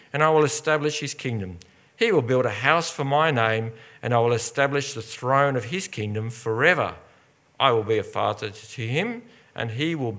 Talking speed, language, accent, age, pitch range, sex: 200 wpm, English, Australian, 50-69, 120-160 Hz, male